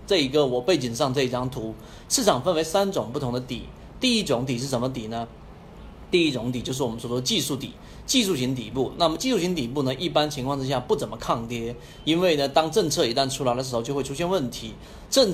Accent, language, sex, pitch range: native, Chinese, male, 125-160 Hz